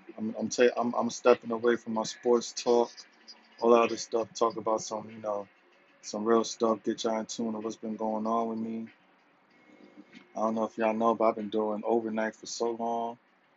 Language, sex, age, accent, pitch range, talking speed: English, male, 20-39, American, 110-120 Hz, 215 wpm